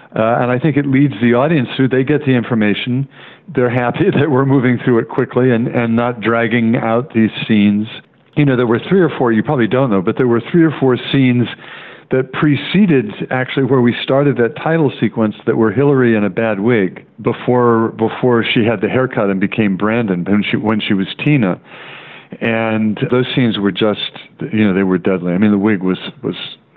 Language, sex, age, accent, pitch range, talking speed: English, male, 50-69, American, 105-130 Hz, 210 wpm